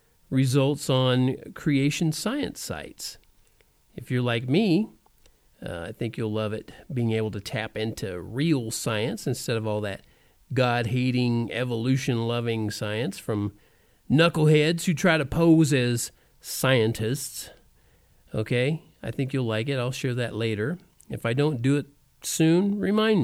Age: 50-69